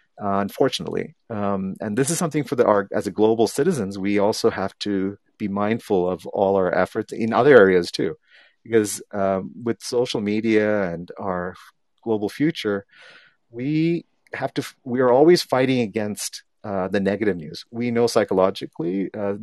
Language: English